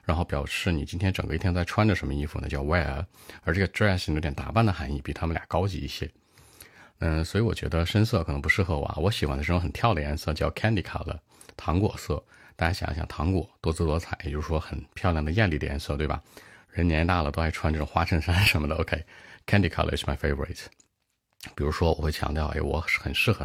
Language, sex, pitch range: Chinese, male, 75-90 Hz